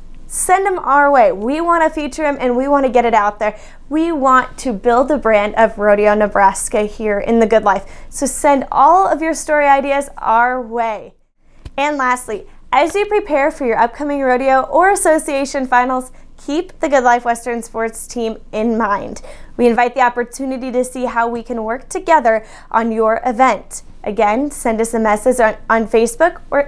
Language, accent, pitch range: English, American, 230-290 Hz